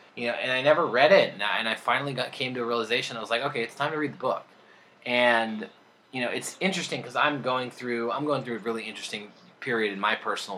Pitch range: 110-135 Hz